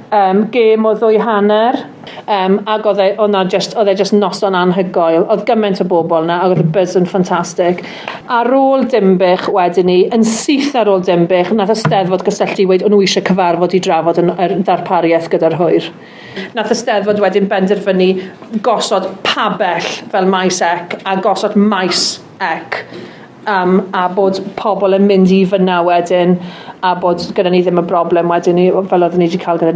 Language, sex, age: English, female, 40-59